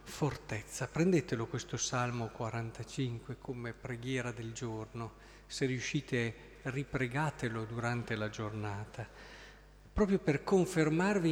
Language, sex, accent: Italian, male, native